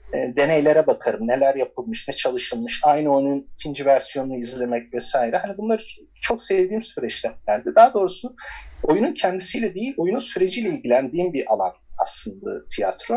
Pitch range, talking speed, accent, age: 135-220 Hz, 130 wpm, native, 50-69